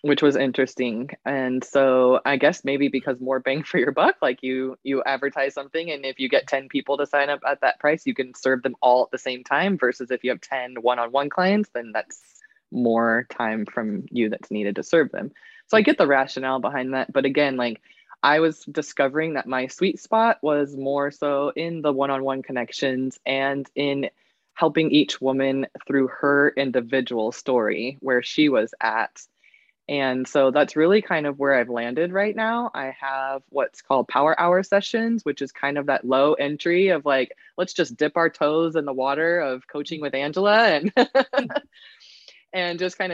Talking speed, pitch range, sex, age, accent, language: 190 wpm, 135-175 Hz, female, 20-39, American, English